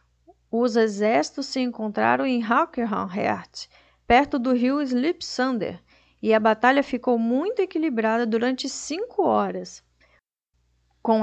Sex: female